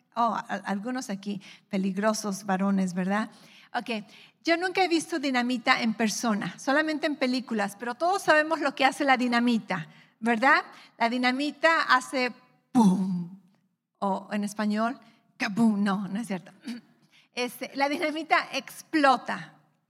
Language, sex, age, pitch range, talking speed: English, female, 40-59, 215-270 Hz, 130 wpm